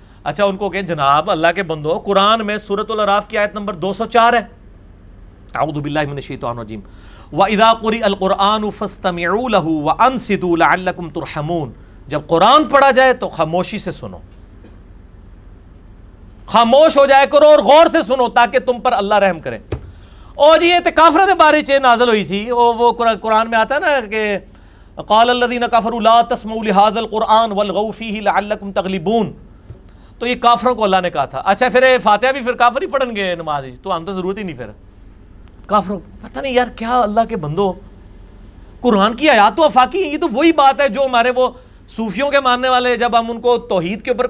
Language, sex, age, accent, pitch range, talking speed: English, male, 40-59, Indian, 150-235 Hz, 135 wpm